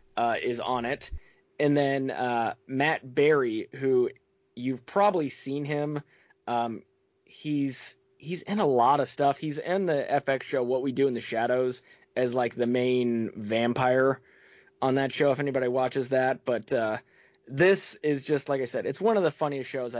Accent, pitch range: American, 125-155 Hz